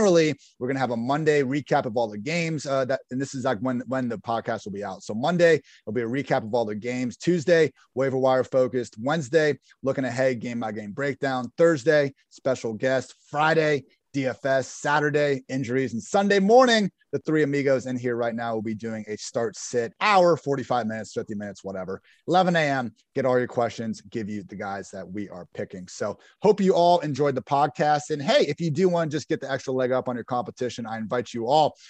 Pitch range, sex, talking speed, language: 125-155 Hz, male, 215 wpm, English